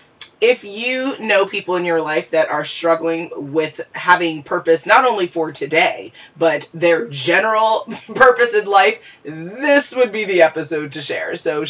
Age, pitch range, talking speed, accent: 20-39, 155-195 Hz, 160 wpm, American